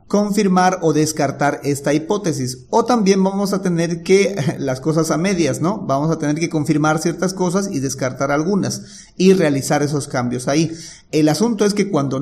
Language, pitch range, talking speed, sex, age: Spanish, 145-175 Hz, 175 wpm, male, 40-59